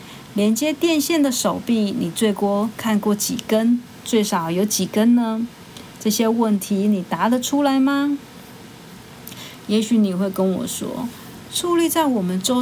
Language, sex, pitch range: Chinese, female, 195-245 Hz